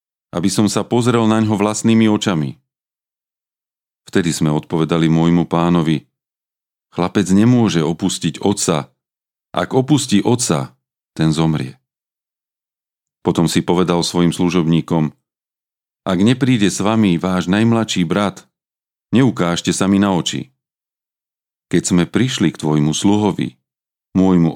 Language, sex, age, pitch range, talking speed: Slovak, male, 40-59, 80-105 Hz, 110 wpm